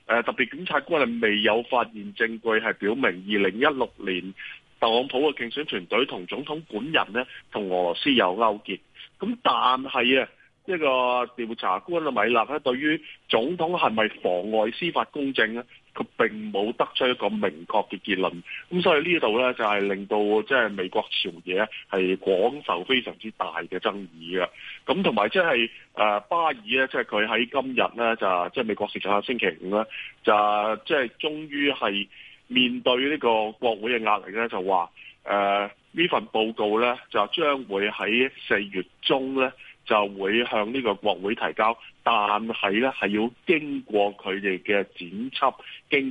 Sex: male